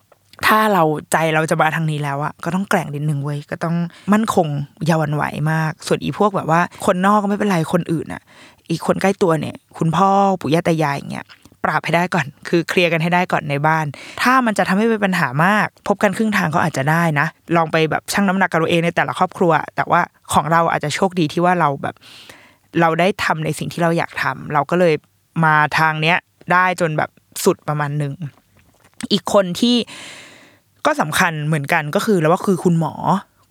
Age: 20-39